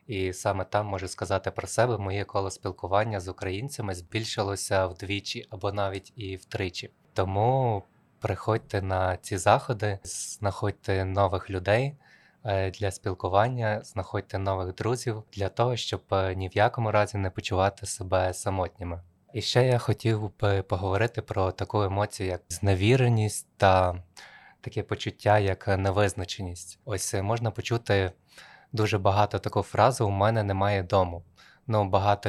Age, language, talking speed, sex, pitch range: 20-39, Ukrainian, 130 wpm, male, 95-110 Hz